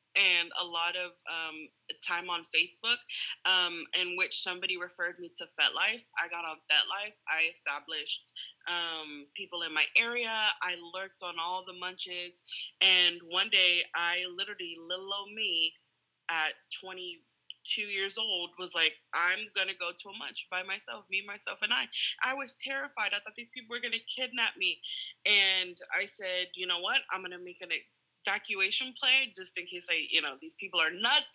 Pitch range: 175-210 Hz